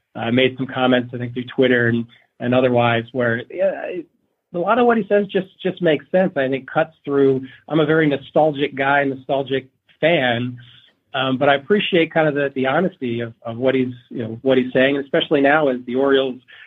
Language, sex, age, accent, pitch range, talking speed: English, male, 40-59, American, 125-155 Hz, 210 wpm